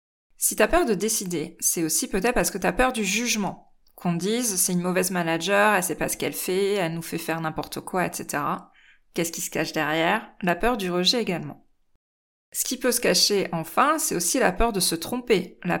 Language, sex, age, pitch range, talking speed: French, female, 20-39, 175-220 Hz, 215 wpm